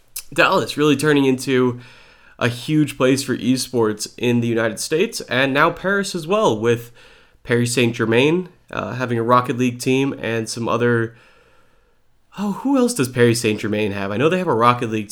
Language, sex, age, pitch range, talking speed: English, male, 30-49, 115-150 Hz, 170 wpm